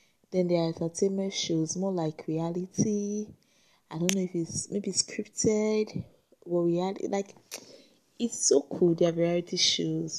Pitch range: 155-185 Hz